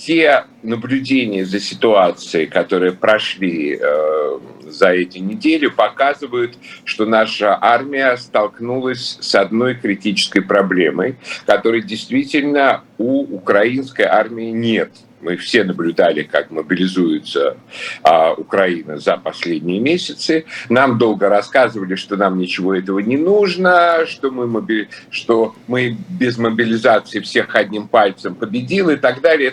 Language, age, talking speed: Russian, 50-69, 120 wpm